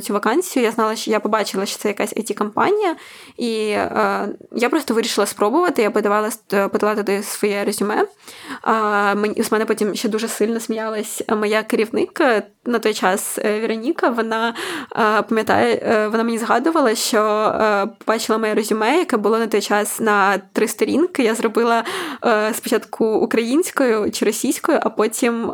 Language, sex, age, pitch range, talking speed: Ukrainian, female, 20-39, 210-235 Hz, 155 wpm